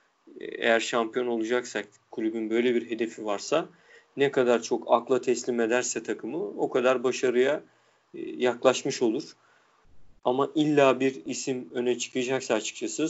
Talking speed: 125 wpm